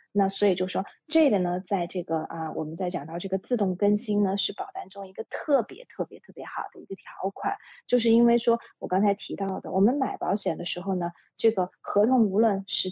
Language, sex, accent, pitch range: Chinese, female, native, 185-235 Hz